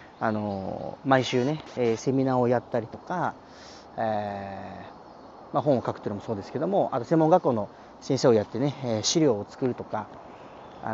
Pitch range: 110-175 Hz